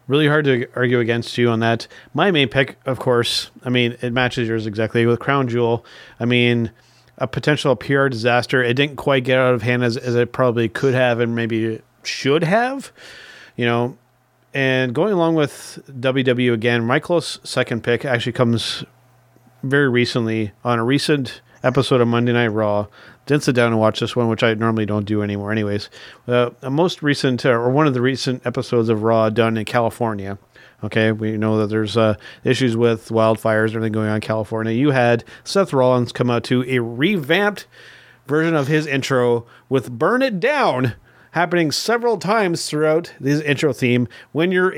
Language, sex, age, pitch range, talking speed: English, male, 40-59, 115-140 Hz, 185 wpm